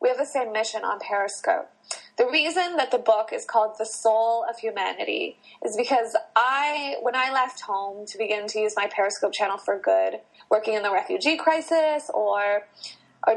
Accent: American